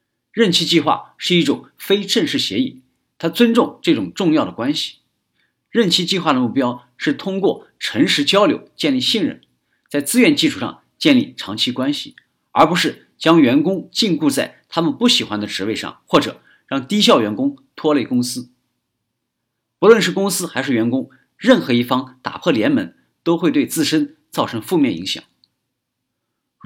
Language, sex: Chinese, male